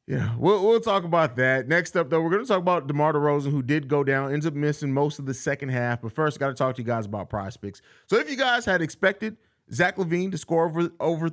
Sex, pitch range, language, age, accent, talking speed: male, 140-190 Hz, English, 30-49, American, 270 wpm